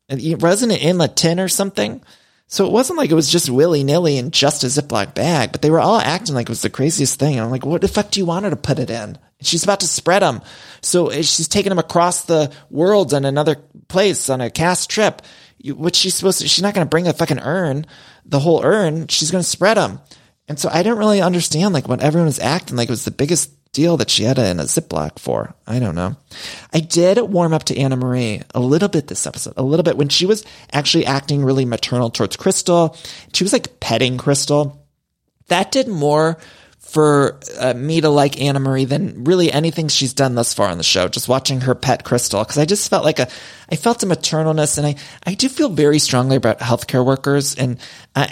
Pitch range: 130-170 Hz